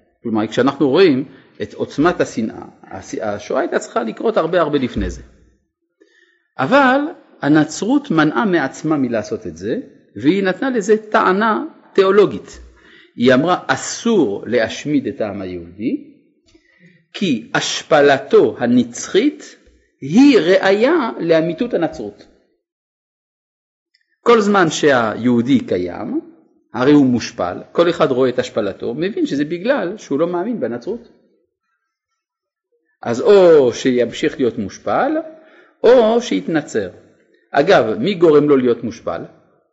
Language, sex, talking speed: Hebrew, male, 110 wpm